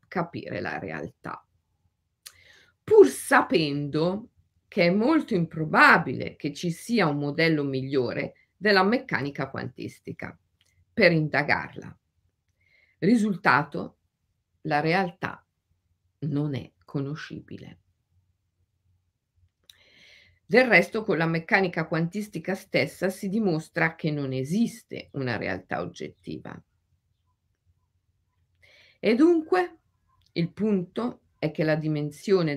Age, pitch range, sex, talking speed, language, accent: 50-69, 125-175 Hz, female, 90 wpm, Italian, native